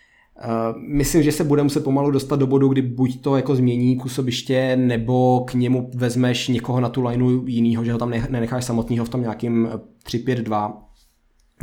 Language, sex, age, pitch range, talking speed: Czech, male, 20-39, 115-130 Hz, 175 wpm